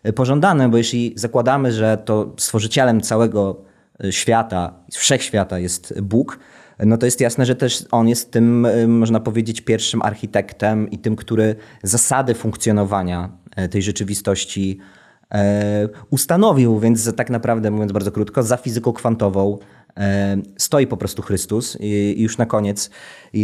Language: Polish